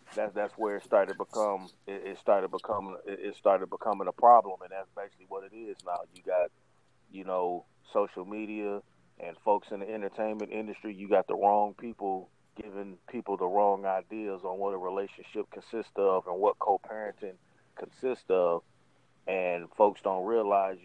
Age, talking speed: 30-49, 175 wpm